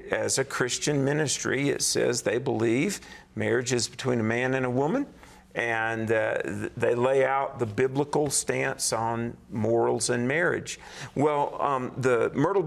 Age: 50-69